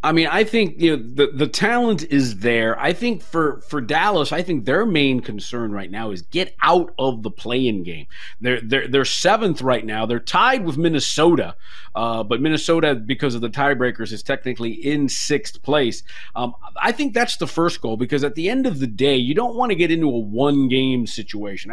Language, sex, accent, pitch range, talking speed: English, male, American, 125-170 Hz, 215 wpm